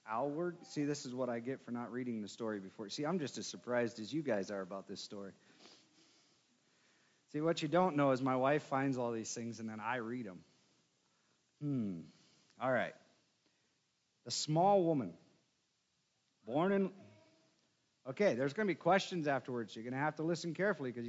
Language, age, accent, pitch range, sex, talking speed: English, 40-59, American, 135-180 Hz, male, 185 wpm